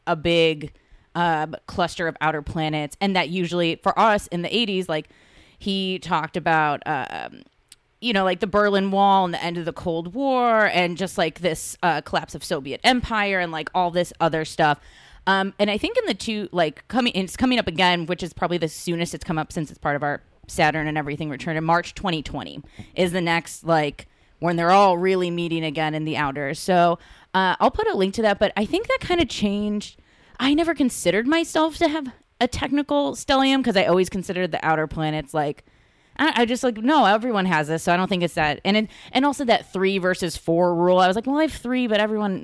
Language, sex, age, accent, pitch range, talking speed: English, female, 20-39, American, 160-210 Hz, 225 wpm